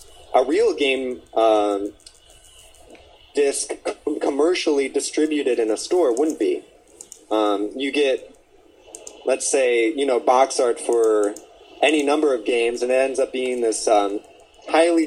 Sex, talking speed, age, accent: male, 140 wpm, 30-49, American